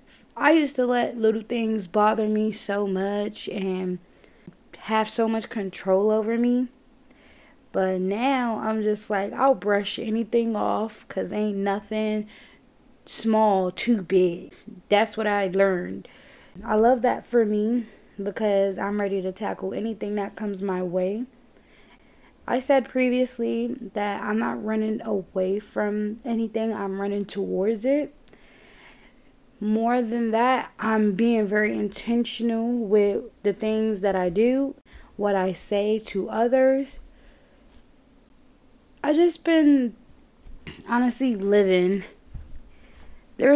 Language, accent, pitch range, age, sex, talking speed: English, American, 200-240 Hz, 20-39, female, 125 wpm